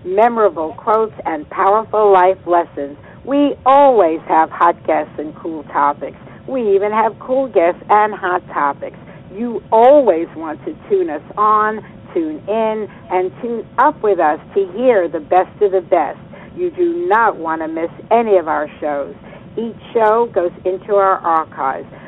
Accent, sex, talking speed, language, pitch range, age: American, female, 160 wpm, English, 175-220 Hz, 60-79